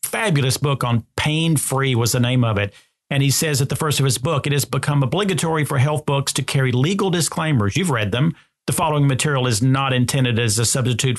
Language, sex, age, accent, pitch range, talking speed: English, male, 40-59, American, 125-160 Hz, 225 wpm